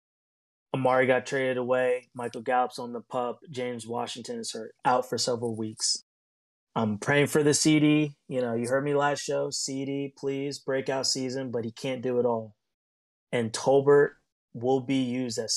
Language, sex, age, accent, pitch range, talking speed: English, male, 20-39, American, 110-130 Hz, 175 wpm